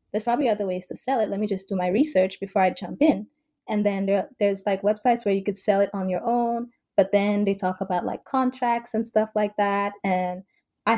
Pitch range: 195-235 Hz